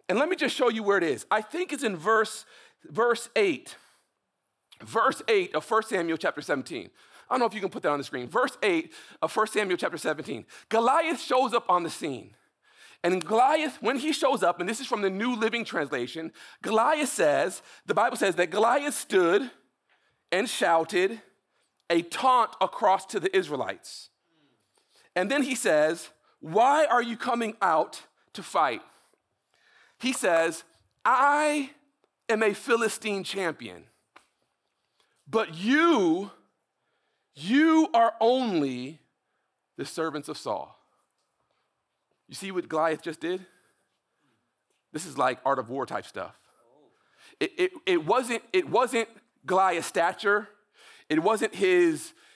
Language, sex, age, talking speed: English, male, 40-59, 145 wpm